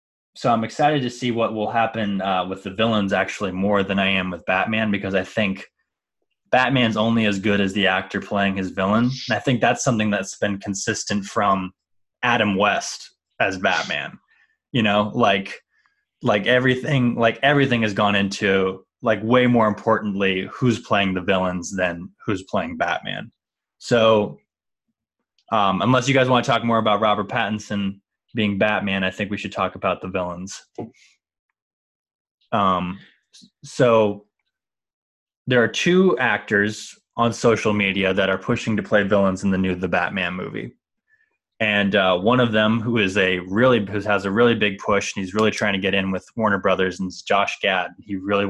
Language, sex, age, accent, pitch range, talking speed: English, male, 20-39, American, 95-115 Hz, 175 wpm